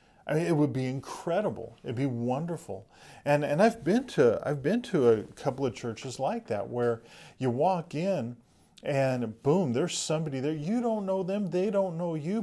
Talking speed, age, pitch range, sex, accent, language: 195 wpm, 40-59, 115-155 Hz, male, American, English